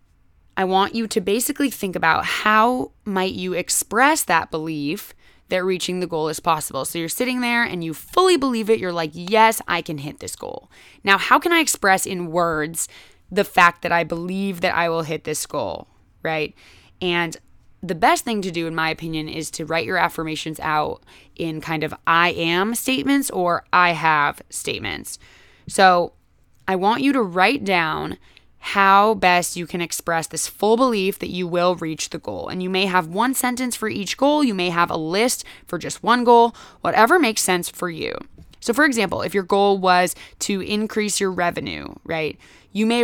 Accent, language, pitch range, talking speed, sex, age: American, English, 170-215 Hz, 190 wpm, female, 20-39